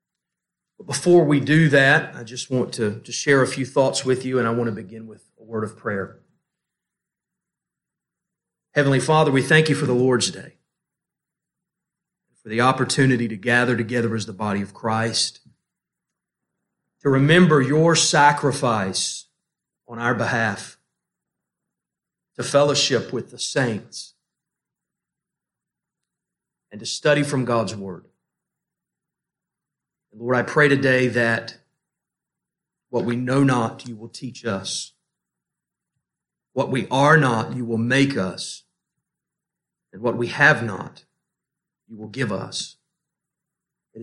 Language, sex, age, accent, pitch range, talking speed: English, male, 40-59, American, 115-155 Hz, 130 wpm